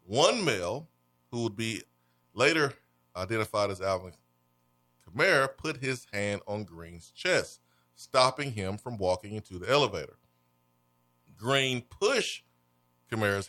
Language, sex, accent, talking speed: English, male, American, 115 wpm